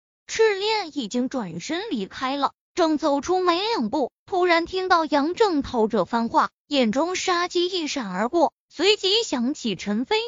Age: 20-39